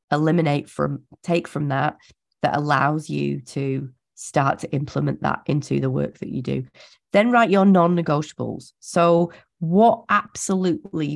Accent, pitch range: British, 135-165 Hz